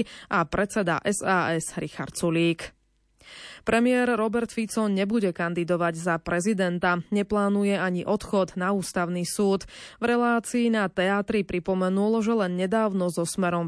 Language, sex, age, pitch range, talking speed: Slovak, female, 20-39, 175-215 Hz, 125 wpm